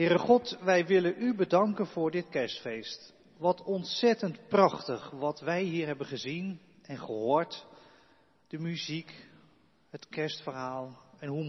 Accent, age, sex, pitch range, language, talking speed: Dutch, 40-59, male, 145-190 Hz, Dutch, 130 wpm